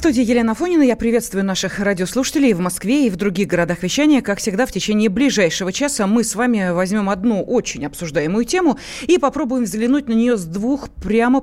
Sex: female